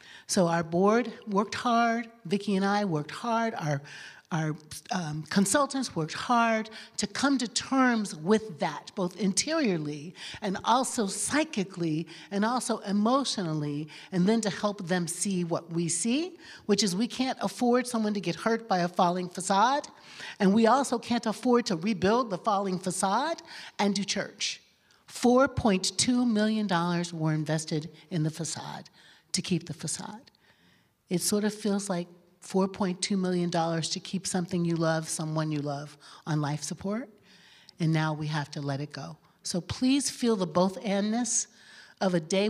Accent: American